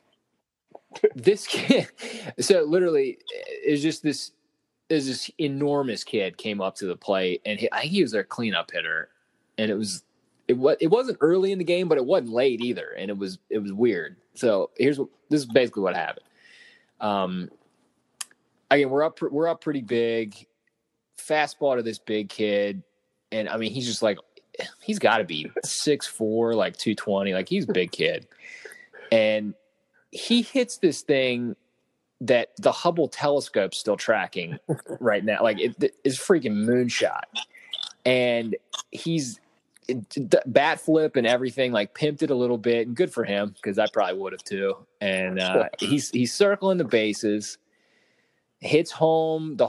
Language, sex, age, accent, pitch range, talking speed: English, male, 20-39, American, 110-160 Hz, 170 wpm